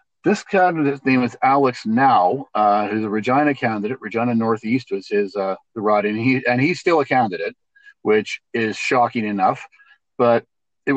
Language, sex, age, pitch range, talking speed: English, male, 50-69, 110-140 Hz, 170 wpm